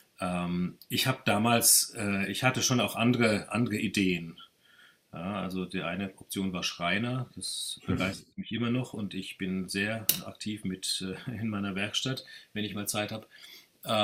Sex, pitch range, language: male, 95-120 Hz, German